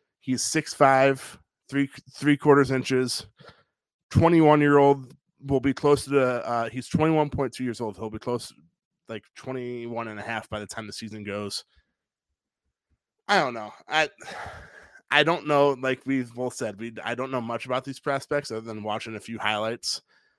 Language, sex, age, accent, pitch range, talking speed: English, male, 20-39, American, 110-135 Hz, 180 wpm